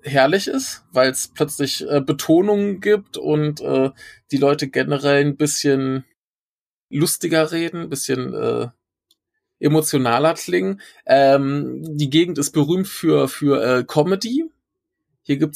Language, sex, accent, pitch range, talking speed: German, male, German, 125-155 Hz, 125 wpm